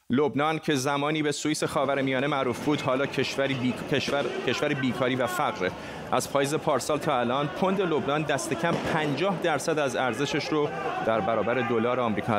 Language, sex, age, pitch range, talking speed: Persian, male, 30-49, 130-155 Hz, 165 wpm